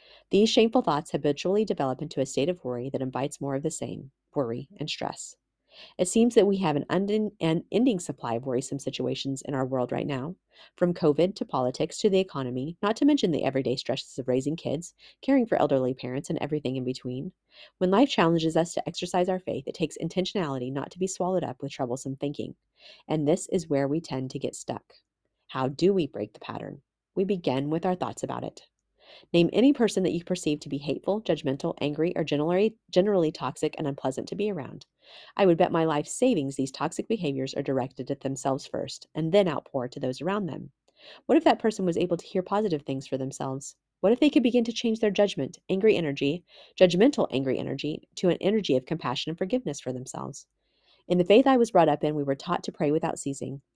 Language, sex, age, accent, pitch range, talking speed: English, female, 30-49, American, 135-185 Hz, 215 wpm